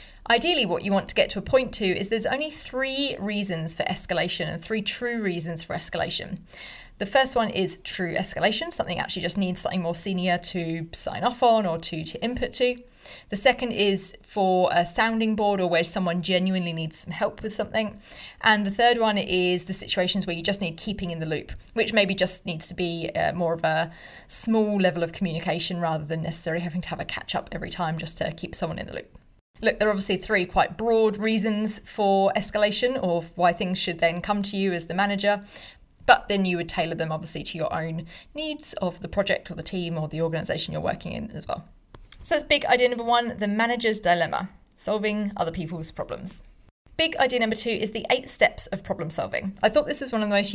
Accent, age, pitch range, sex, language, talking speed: British, 30-49, 175-220 Hz, female, English, 220 wpm